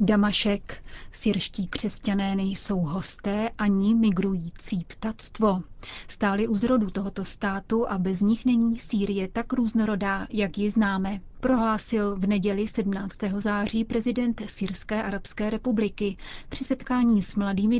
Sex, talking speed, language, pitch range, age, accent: female, 120 wpm, Czech, 200-220 Hz, 30-49, native